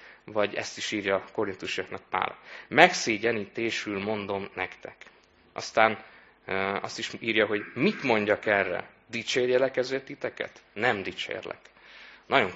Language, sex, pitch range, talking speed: Hungarian, male, 95-125 Hz, 115 wpm